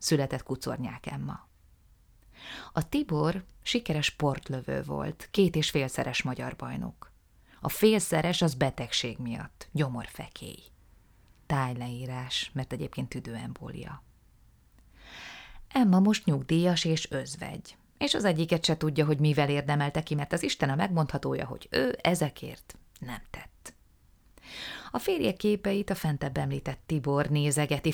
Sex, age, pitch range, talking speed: female, 30-49, 140-175 Hz, 120 wpm